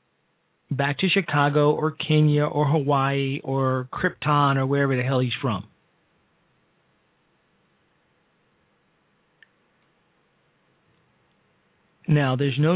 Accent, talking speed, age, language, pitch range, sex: American, 85 wpm, 40-59, English, 135-160 Hz, male